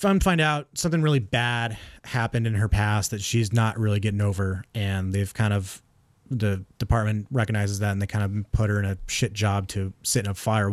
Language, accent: English, American